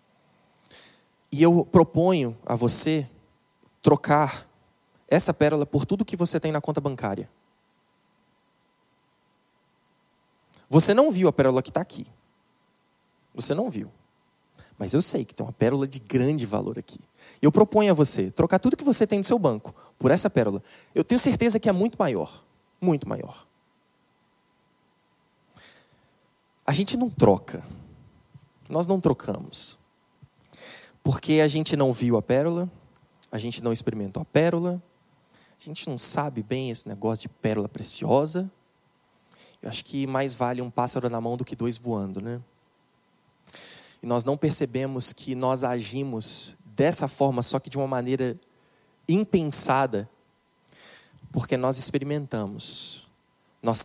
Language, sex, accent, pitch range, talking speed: Portuguese, male, Brazilian, 120-160 Hz, 140 wpm